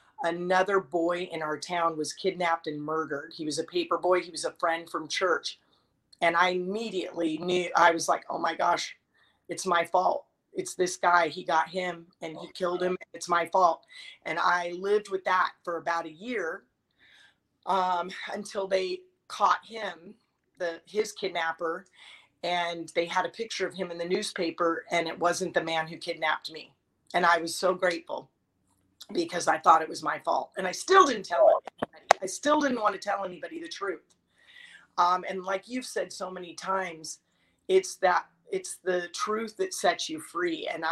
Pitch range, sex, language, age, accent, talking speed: 170-200 Hz, female, English, 30-49, American, 185 wpm